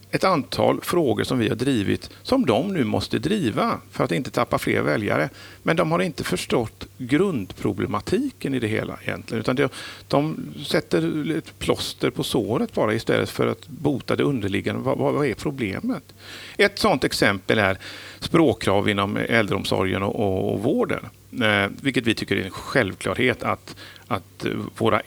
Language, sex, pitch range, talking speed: English, male, 100-160 Hz, 150 wpm